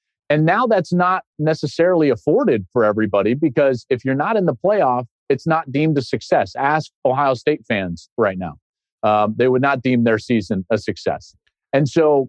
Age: 40-59